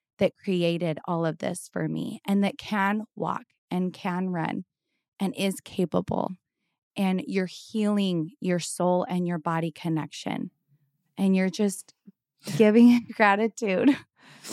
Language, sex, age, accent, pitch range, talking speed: English, female, 20-39, American, 180-220 Hz, 130 wpm